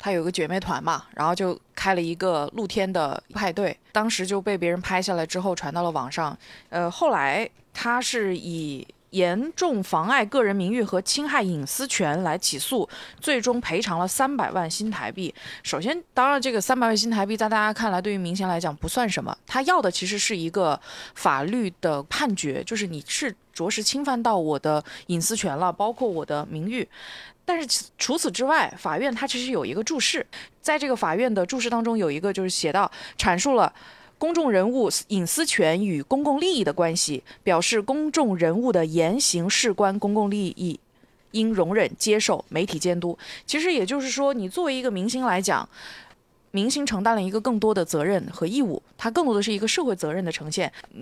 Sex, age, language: female, 20-39, Chinese